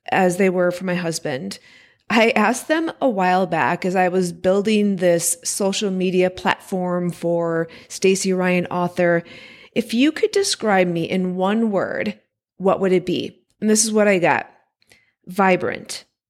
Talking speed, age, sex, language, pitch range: 160 wpm, 30-49, female, English, 175-215 Hz